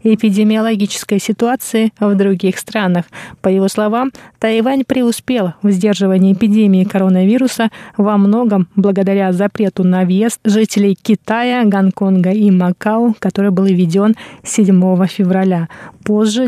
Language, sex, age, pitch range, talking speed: Russian, female, 20-39, 195-225 Hz, 115 wpm